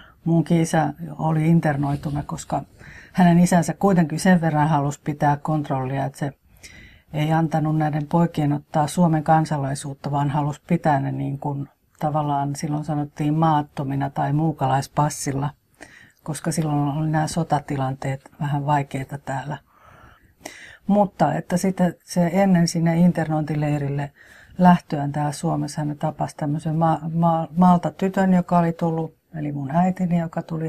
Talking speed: 130 wpm